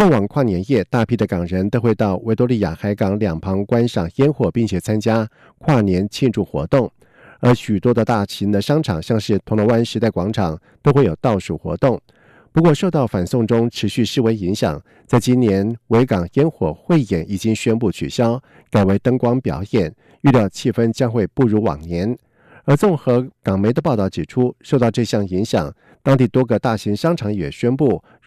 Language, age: German, 50-69